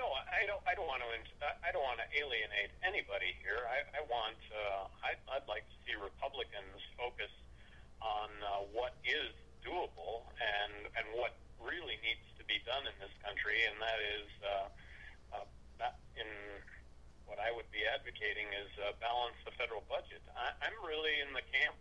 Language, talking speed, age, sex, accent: English, 175 wpm, 50-69, male, American